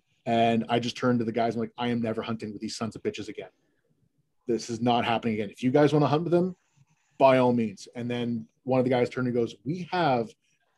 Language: English